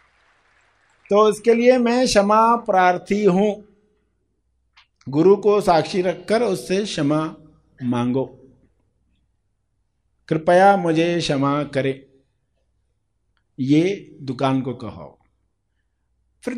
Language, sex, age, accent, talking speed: Hindi, male, 50-69, native, 85 wpm